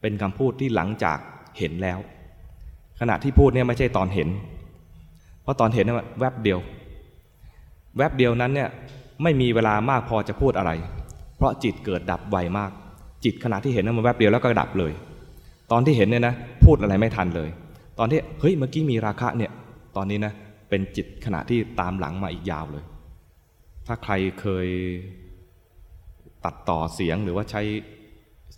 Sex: male